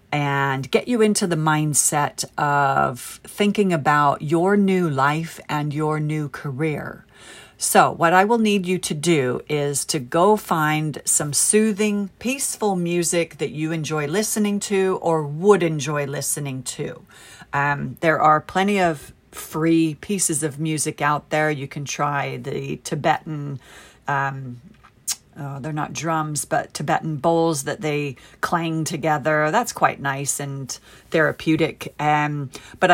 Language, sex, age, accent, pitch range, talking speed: English, female, 40-59, American, 145-185 Hz, 140 wpm